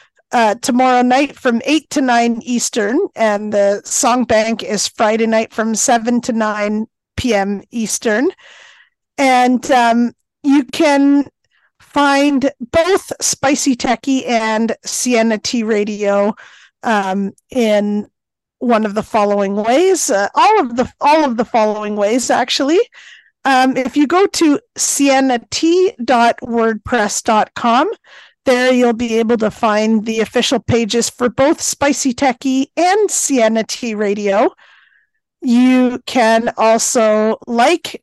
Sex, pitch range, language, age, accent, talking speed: female, 220-270 Hz, English, 40-59, American, 120 wpm